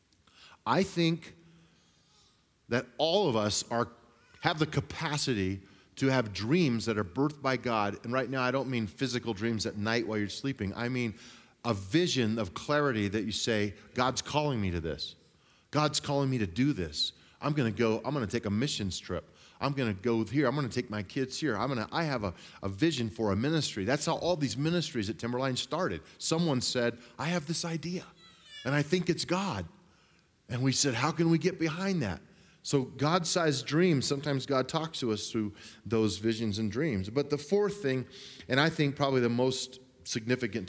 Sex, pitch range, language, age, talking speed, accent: male, 105-145 Hz, English, 30-49, 195 wpm, American